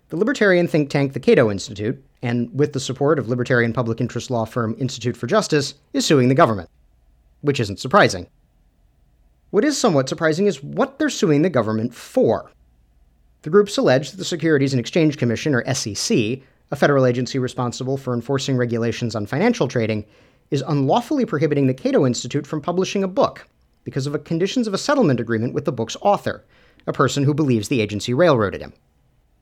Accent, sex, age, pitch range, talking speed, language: American, male, 40-59, 120-155 Hz, 180 wpm, English